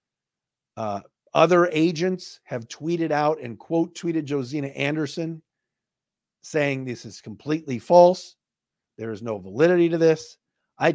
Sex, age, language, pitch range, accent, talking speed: male, 50-69, English, 115-150 Hz, American, 125 wpm